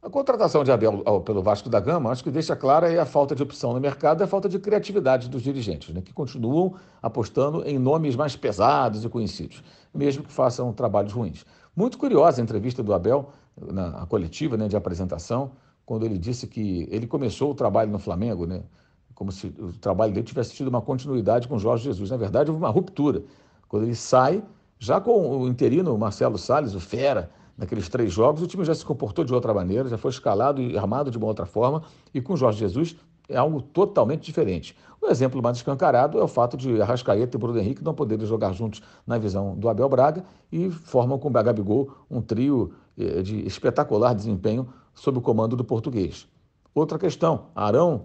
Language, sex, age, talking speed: Portuguese, male, 60-79, 195 wpm